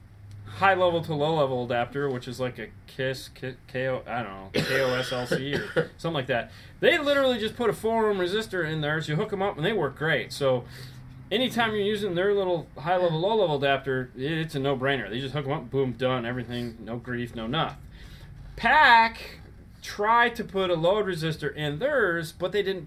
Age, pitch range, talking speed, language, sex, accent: 30-49, 120-160 Hz, 200 wpm, English, male, American